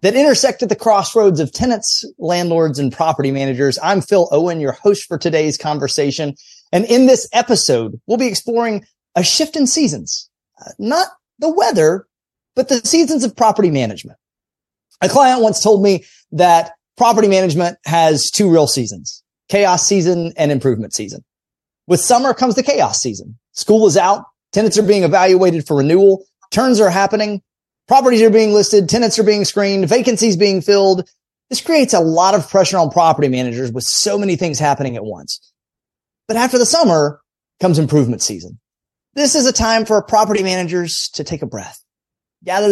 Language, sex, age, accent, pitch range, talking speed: English, male, 30-49, American, 160-225 Hz, 170 wpm